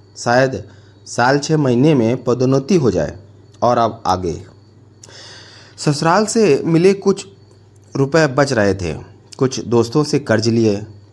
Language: Hindi